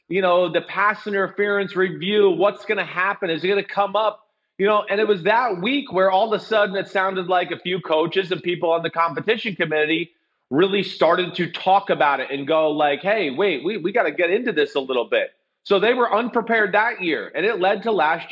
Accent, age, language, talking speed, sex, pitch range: American, 30-49, English, 235 wpm, male, 155-205 Hz